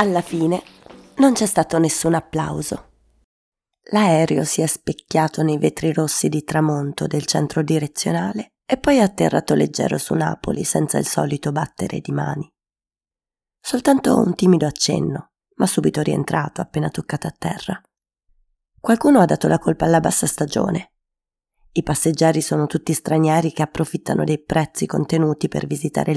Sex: female